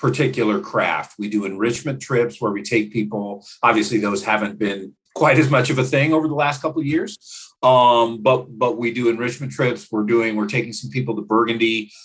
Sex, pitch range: male, 105-125 Hz